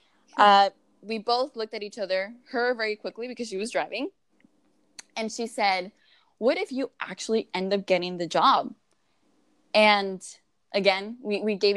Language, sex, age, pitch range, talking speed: English, female, 10-29, 185-235 Hz, 160 wpm